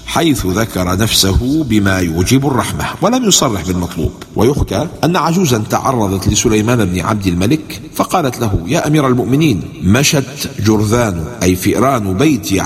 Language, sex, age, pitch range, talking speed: English, male, 50-69, 95-130 Hz, 130 wpm